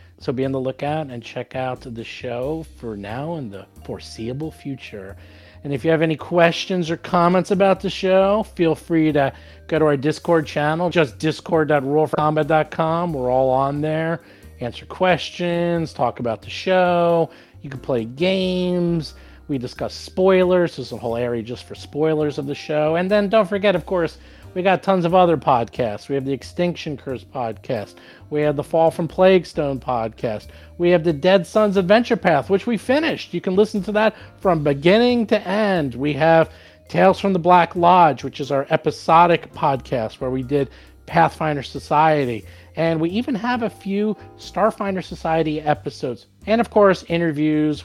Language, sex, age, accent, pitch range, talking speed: English, male, 40-59, American, 125-180 Hz, 175 wpm